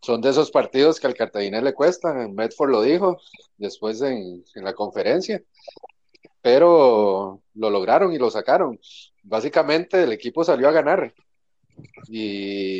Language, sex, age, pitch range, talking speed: Spanish, male, 30-49, 110-145 Hz, 145 wpm